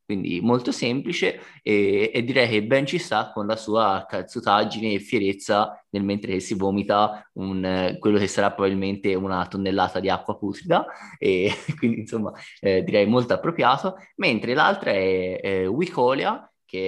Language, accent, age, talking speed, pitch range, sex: Italian, native, 20-39, 155 wpm, 95-110 Hz, male